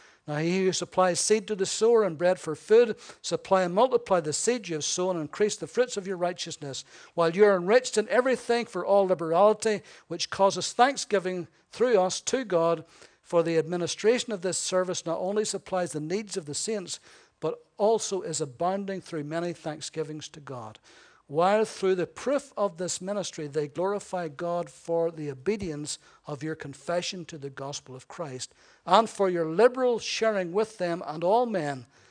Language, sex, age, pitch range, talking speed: English, male, 60-79, 155-200 Hz, 180 wpm